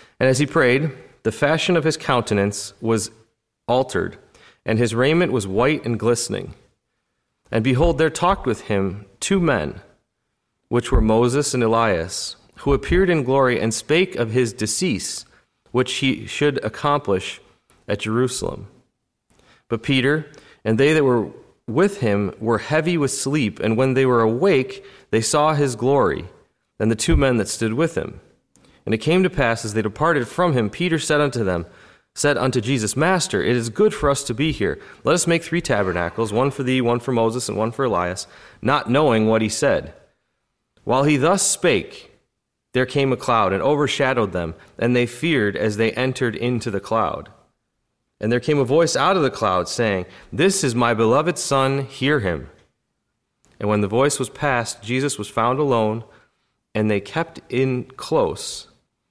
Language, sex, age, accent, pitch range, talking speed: English, male, 30-49, American, 110-145 Hz, 175 wpm